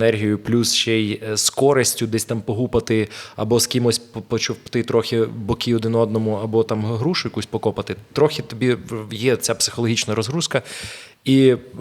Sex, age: male, 20-39